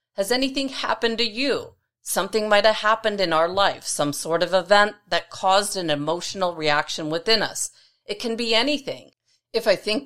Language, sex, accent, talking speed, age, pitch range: English, female, American, 180 wpm, 40-59, 160-210 Hz